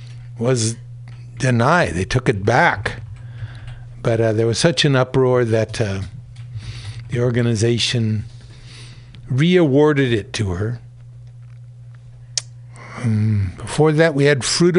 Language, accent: English, American